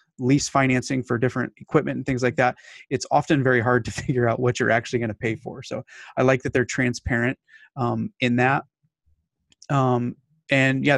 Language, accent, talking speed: English, American, 190 wpm